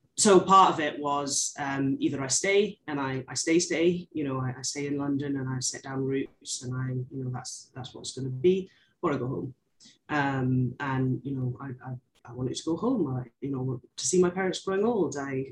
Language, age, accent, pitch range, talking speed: English, 30-49, British, 135-175 Hz, 240 wpm